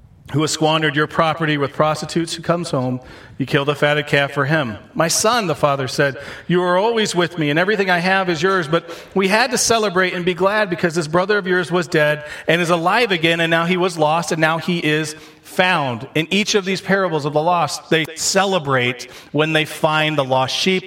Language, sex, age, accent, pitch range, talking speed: English, male, 40-59, American, 135-180 Hz, 225 wpm